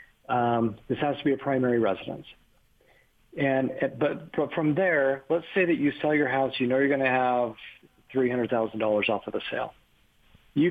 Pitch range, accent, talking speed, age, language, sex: 120-145 Hz, American, 180 wpm, 50-69, English, male